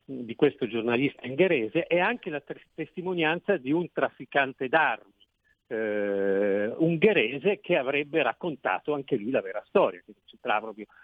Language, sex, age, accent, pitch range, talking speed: Italian, male, 50-69, native, 120-145 Hz, 140 wpm